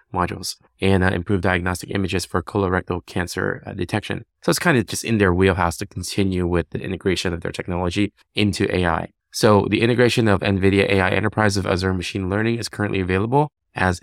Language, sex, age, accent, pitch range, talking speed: English, male, 20-39, American, 95-110 Hz, 190 wpm